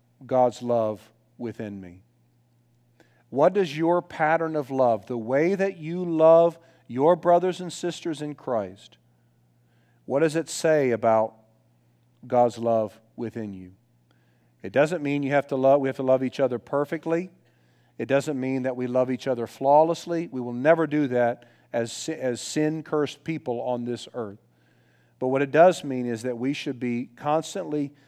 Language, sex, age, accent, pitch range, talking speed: English, male, 50-69, American, 115-150 Hz, 155 wpm